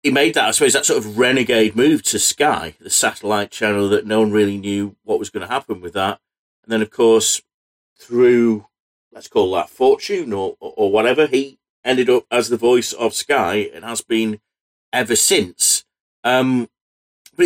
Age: 40-59